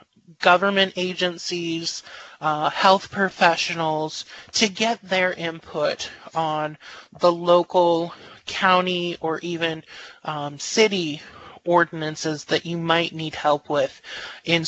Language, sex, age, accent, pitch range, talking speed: English, male, 20-39, American, 160-185 Hz, 100 wpm